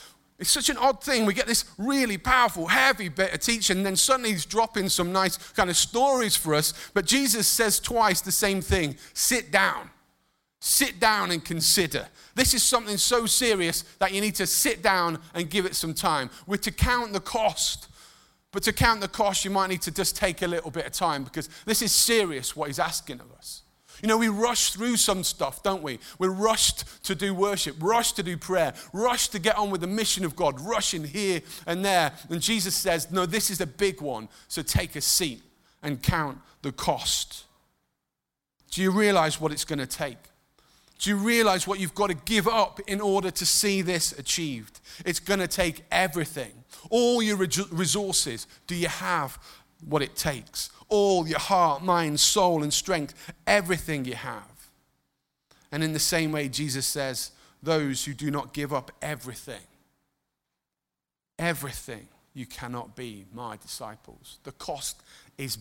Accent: British